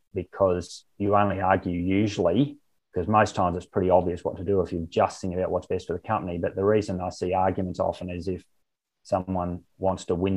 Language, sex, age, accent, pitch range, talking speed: English, male, 20-39, Australian, 90-100 Hz, 215 wpm